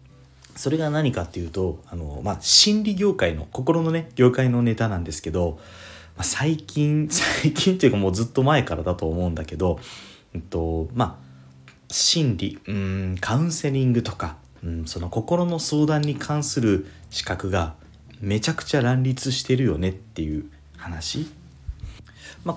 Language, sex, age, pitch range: Japanese, male, 30-49, 85-135 Hz